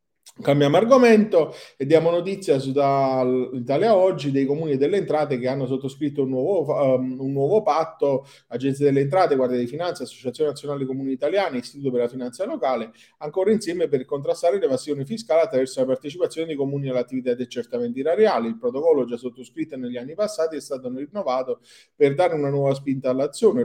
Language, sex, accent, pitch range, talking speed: Italian, male, native, 125-165 Hz, 175 wpm